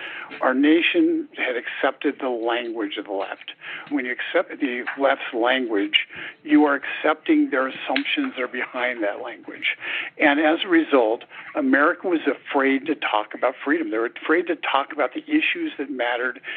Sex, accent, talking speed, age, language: male, American, 165 wpm, 60-79, English